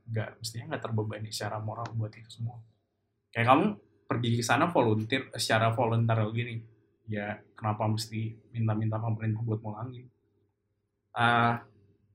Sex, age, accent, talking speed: male, 20-39, native, 130 wpm